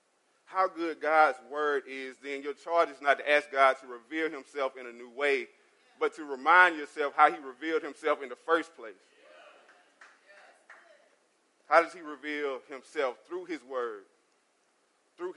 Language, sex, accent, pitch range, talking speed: English, male, American, 150-225 Hz, 160 wpm